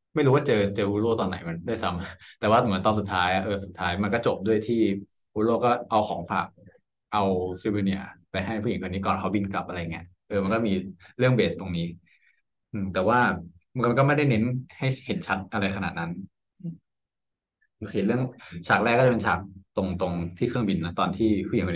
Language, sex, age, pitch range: Thai, male, 20-39, 95-115 Hz